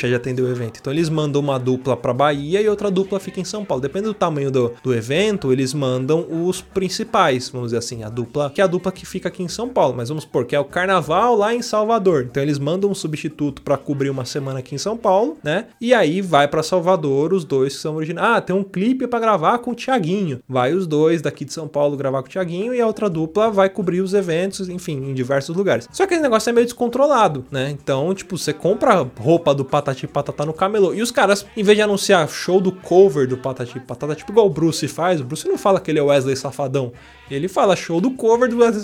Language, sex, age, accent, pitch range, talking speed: Portuguese, male, 20-39, Brazilian, 140-195 Hz, 250 wpm